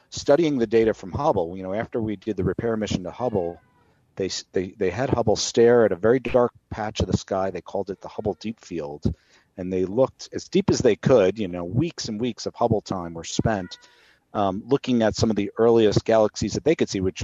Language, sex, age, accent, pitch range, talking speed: English, male, 40-59, American, 95-115 Hz, 235 wpm